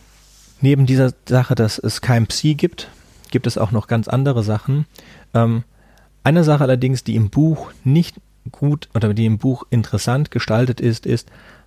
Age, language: 30-49, German